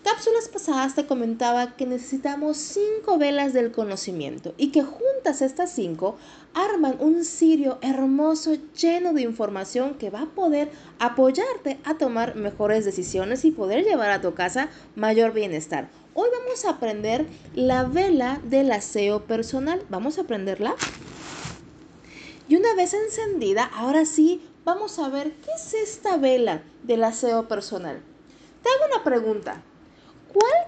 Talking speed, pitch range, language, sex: 140 wpm, 220-325 Hz, Spanish, female